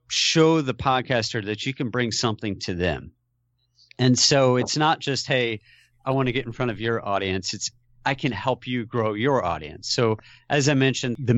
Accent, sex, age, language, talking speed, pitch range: American, male, 40-59, English, 200 wpm, 105-130 Hz